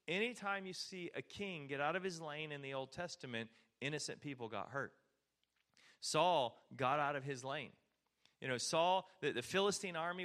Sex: male